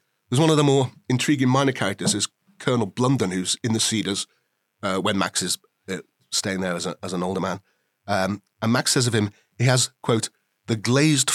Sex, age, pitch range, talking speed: male, 30-49, 100-135 Hz, 205 wpm